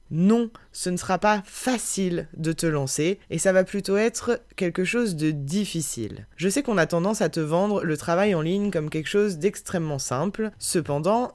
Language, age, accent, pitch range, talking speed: French, 20-39, French, 150-200 Hz, 190 wpm